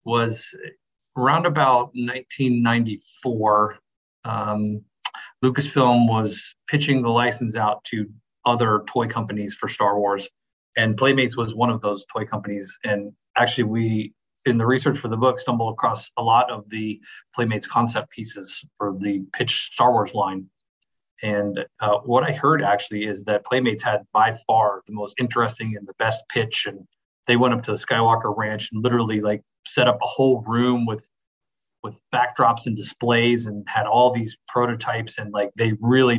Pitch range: 105-120 Hz